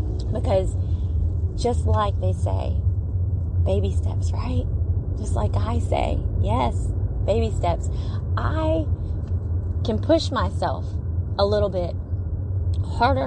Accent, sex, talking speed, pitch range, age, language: American, female, 105 wpm, 90-95 Hz, 30-49, English